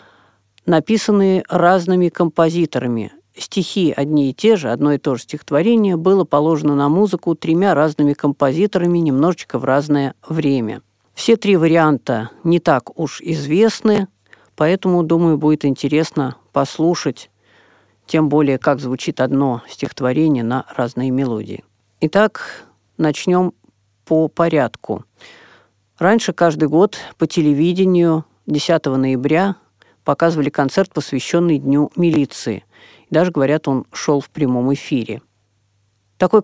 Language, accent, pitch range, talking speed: Russian, native, 135-175 Hz, 115 wpm